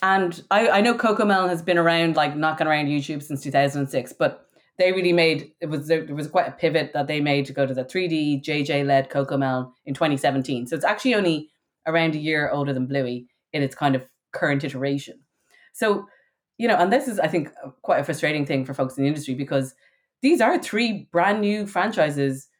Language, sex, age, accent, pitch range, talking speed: English, female, 20-39, Irish, 145-180 Hz, 205 wpm